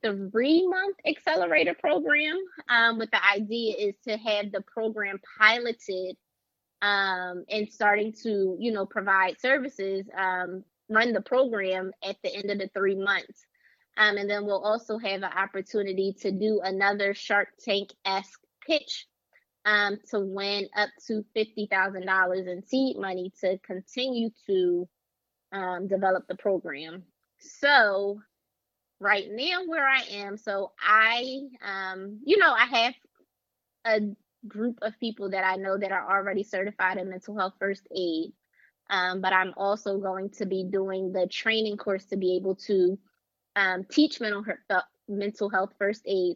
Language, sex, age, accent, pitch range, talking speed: English, female, 20-39, American, 190-220 Hz, 150 wpm